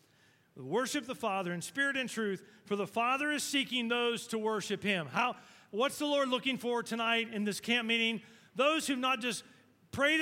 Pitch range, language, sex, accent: 205-265 Hz, English, male, American